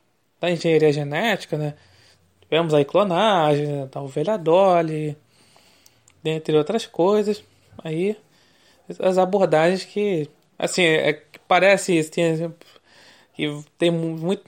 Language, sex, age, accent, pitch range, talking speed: Portuguese, male, 20-39, Brazilian, 150-190 Hz, 105 wpm